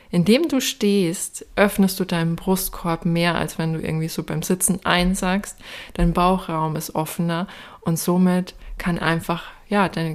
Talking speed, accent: 155 wpm, German